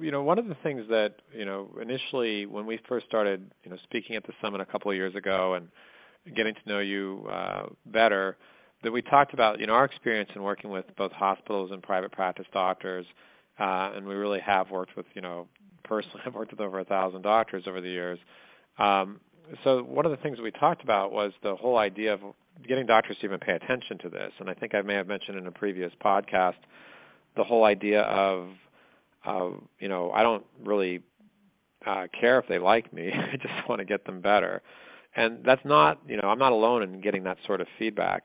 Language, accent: English, American